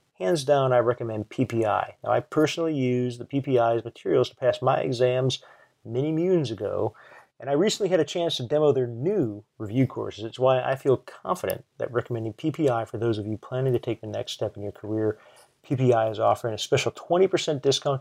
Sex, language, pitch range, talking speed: male, English, 115-145 Hz, 195 wpm